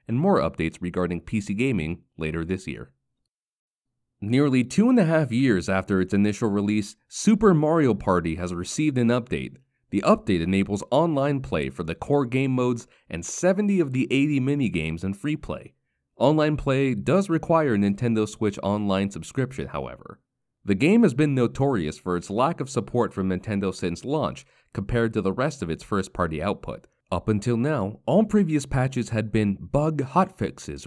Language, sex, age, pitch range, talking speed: English, male, 30-49, 95-140 Hz, 170 wpm